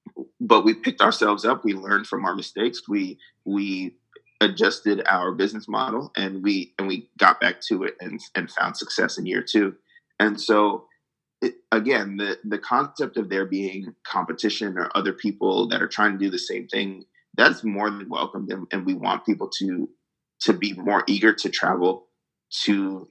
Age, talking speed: 30-49, 180 wpm